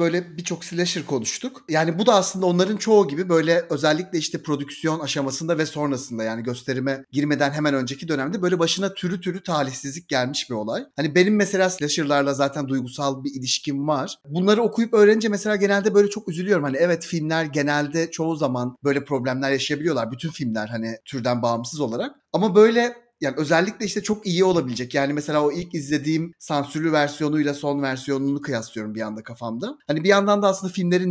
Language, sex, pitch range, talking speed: Turkish, male, 140-185 Hz, 175 wpm